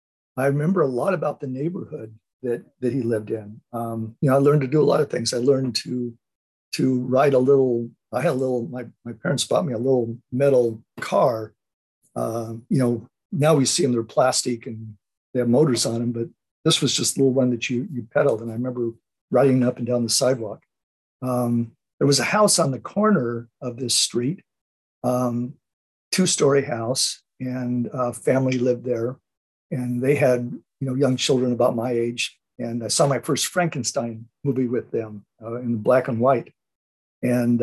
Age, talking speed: 50-69, 195 wpm